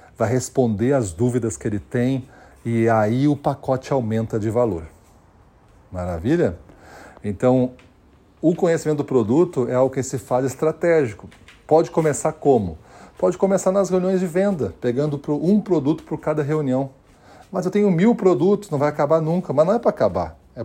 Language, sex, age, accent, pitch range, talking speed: Portuguese, male, 40-59, Brazilian, 115-155 Hz, 165 wpm